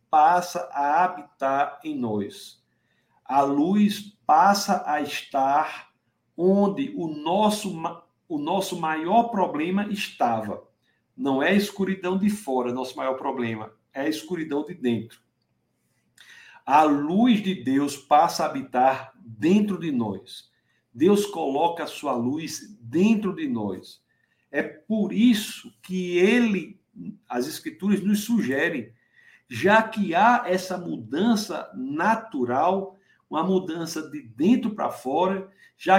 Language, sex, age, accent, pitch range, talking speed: Portuguese, male, 60-79, Brazilian, 145-210 Hz, 120 wpm